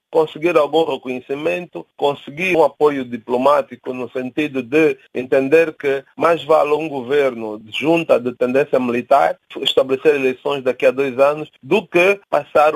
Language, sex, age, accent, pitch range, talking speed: English, male, 40-59, Brazilian, 135-180 Hz, 140 wpm